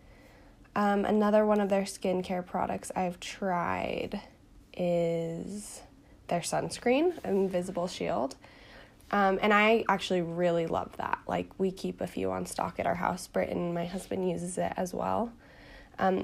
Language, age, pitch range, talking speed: English, 10-29, 175-205 Hz, 145 wpm